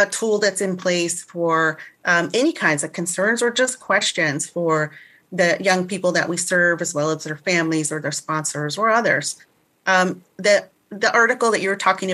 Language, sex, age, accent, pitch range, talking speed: English, female, 30-49, American, 175-205 Hz, 195 wpm